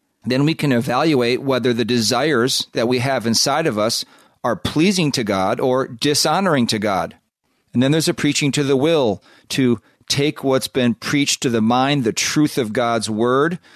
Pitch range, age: 120-145 Hz, 40-59